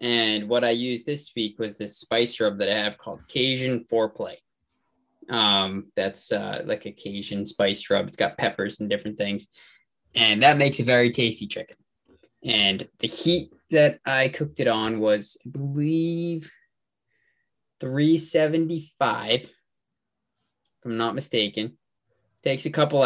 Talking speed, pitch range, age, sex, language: 145 wpm, 105-140 Hz, 20-39, male, English